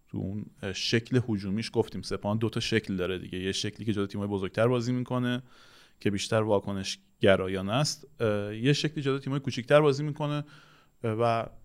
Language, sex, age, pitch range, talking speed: Persian, male, 30-49, 100-135 Hz, 160 wpm